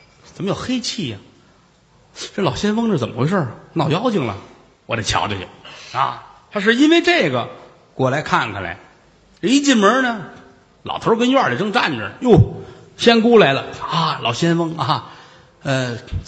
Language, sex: Chinese, male